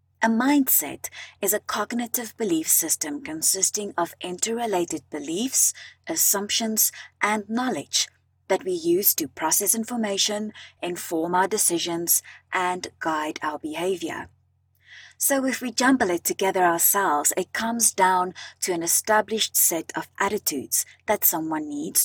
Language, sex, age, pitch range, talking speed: English, female, 30-49, 175-245 Hz, 125 wpm